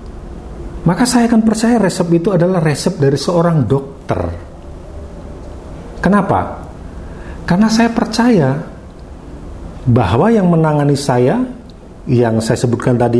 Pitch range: 90-145 Hz